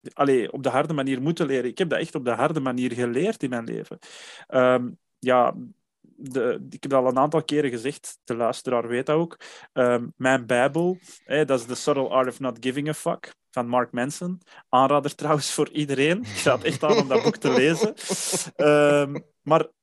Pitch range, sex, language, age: 130-155 Hz, male, Dutch, 30-49